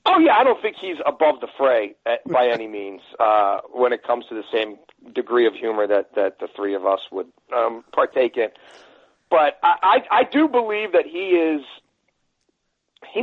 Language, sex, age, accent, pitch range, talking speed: English, male, 50-69, American, 120-175 Hz, 195 wpm